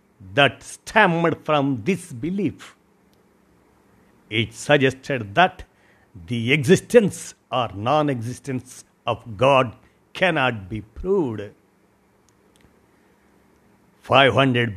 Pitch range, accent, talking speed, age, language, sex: 115-150 Hz, native, 75 wpm, 60-79, Telugu, male